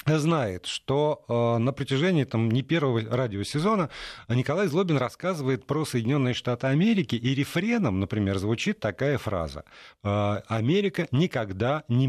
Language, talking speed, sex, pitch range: Russian, 130 wpm, male, 105-145 Hz